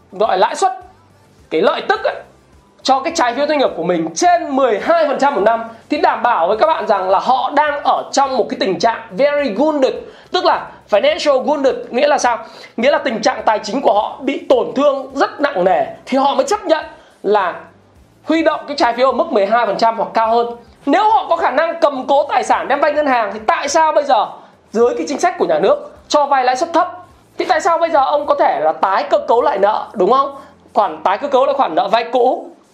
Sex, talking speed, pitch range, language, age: male, 235 wpm, 250-320 Hz, Vietnamese, 20-39